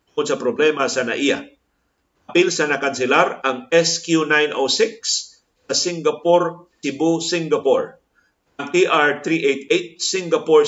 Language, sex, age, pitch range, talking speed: Filipino, male, 50-69, 145-195 Hz, 95 wpm